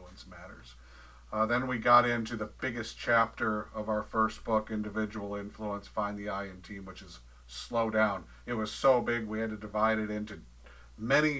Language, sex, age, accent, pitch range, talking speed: English, male, 50-69, American, 100-120 Hz, 185 wpm